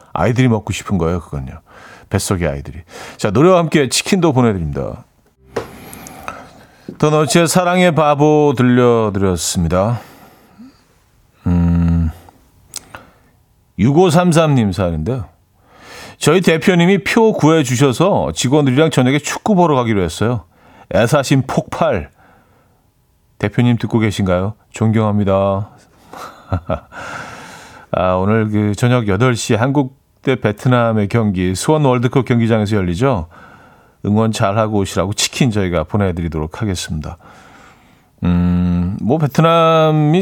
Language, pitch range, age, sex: Korean, 95-140 Hz, 40-59, male